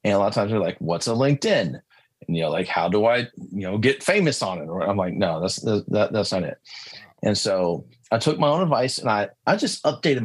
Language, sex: English, male